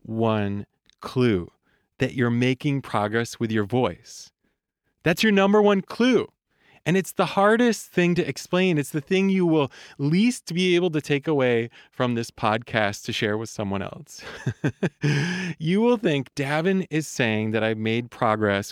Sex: male